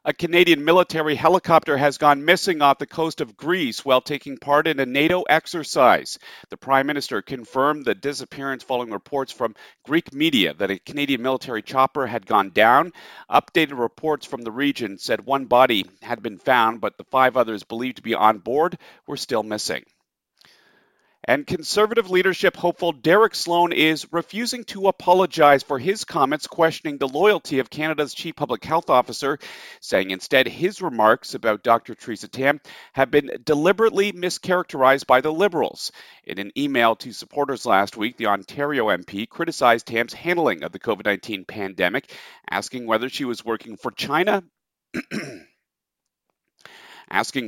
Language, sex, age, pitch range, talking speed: English, male, 40-59, 125-165 Hz, 155 wpm